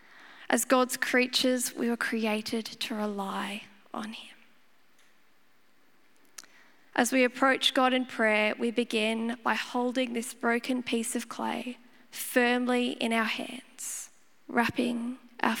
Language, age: English, 10-29